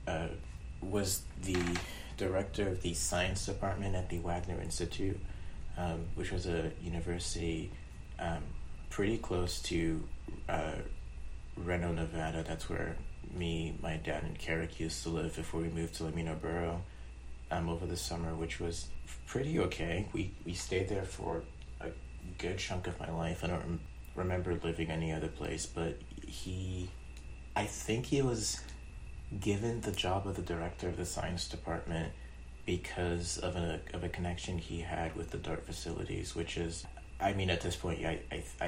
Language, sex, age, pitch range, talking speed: English, male, 30-49, 80-90 Hz, 160 wpm